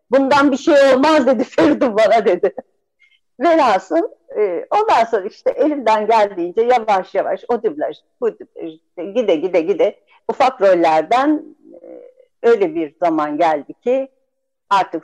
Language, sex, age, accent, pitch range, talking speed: Turkish, female, 60-79, native, 195-310 Hz, 115 wpm